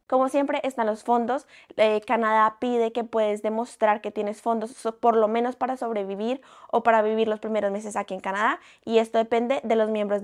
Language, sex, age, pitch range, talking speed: Spanish, female, 20-39, 210-240 Hz, 200 wpm